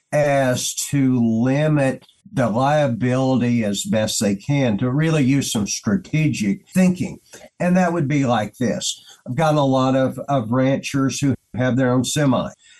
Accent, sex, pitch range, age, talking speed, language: American, male, 115-145 Hz, 50-69, 155 wpm, English